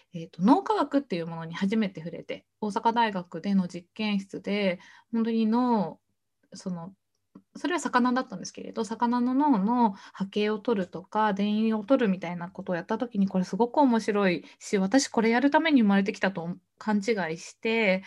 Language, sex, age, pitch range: Japanese, female, 20-39, 195-280 Hz